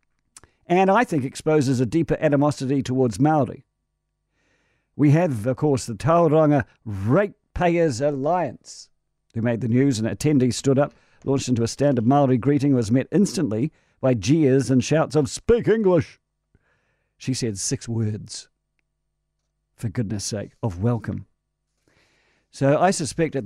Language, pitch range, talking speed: English, 120-160 Hz, 140 wpm